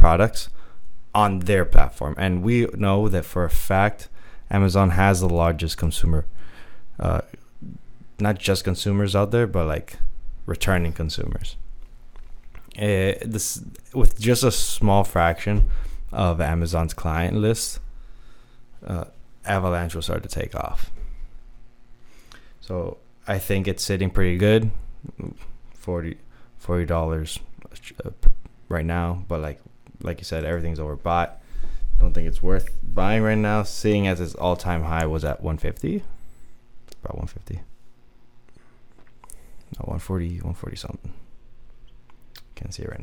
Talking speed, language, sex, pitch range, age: 125 wpm, English, male, 85-105 Hz, 20-39